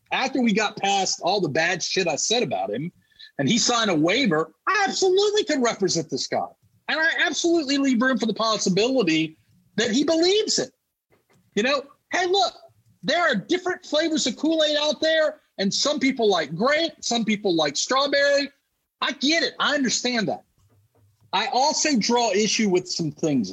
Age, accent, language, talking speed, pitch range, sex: 40-59, American, English, 175 wpm, 180-285 Hz, male